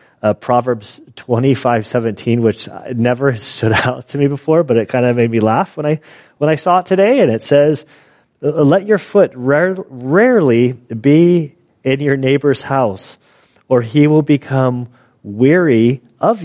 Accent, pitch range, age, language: American, 125-175 Hz, 30-49, English